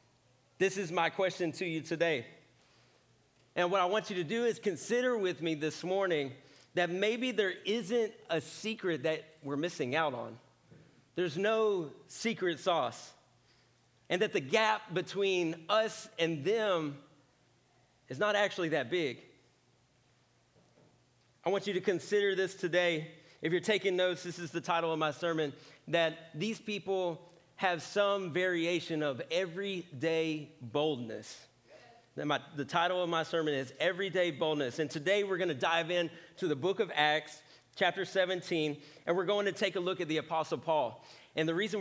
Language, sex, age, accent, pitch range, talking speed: English, male, 40-59, American, 155-185 Hz, 160 wpm